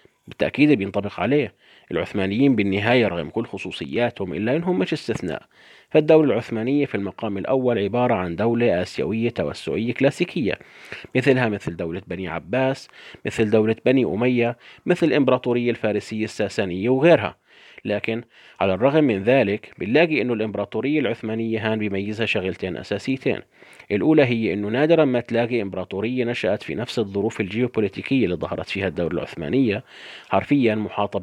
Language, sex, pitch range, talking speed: Arabic, male, 105-130 Hz, 135 wpm